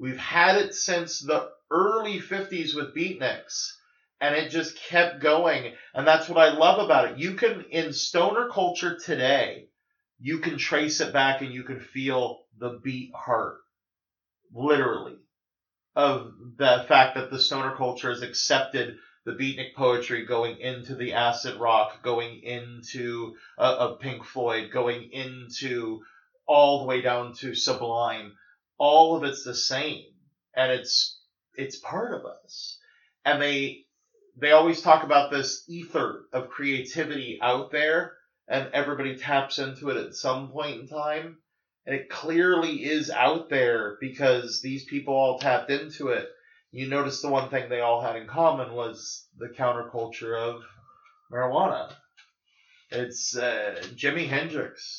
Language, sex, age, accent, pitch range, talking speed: English, male, 40-59, American, 125-160 Hz, 145 wpm